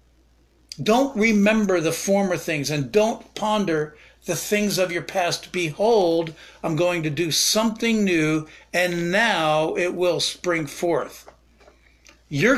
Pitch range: 155-205 Hz